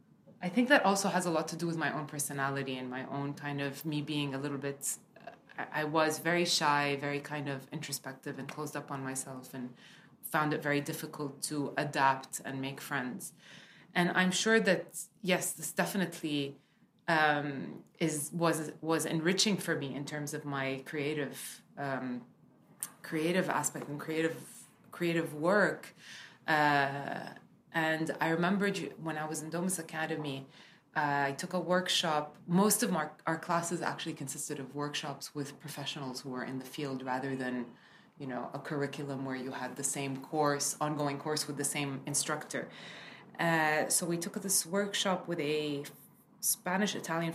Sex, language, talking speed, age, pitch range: female, English, 165 wpm, 20-39, 140-170 Hz